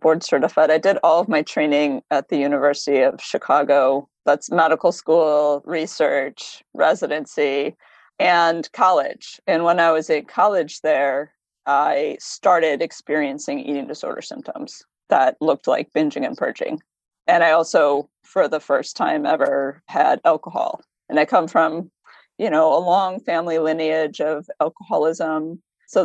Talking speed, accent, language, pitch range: 145 wpm, American, English, 150-175 Hz